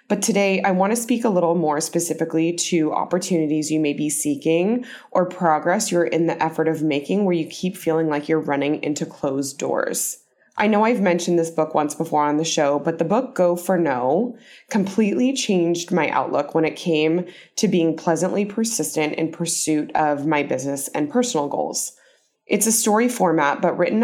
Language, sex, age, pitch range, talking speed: English, female, 20-39, 155-195 Hz, 190 wpm